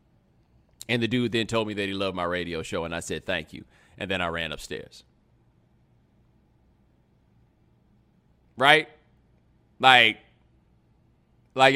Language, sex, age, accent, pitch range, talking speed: English, male, 30-49, American, 100-130 Hz, 130 wpm